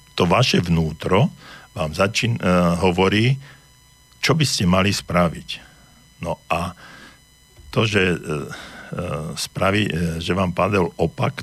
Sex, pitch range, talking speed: male, 85-95 Hz, 120 wpm